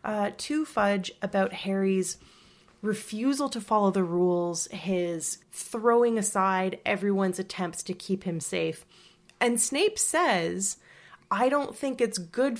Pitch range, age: 180-240 Hz, 20-39